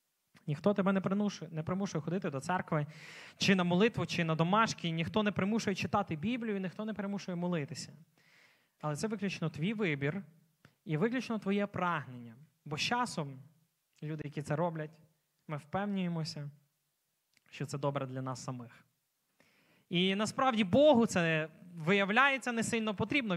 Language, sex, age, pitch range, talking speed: Ukrainian, male, 20-39, 155-205 Hz, 140 wpm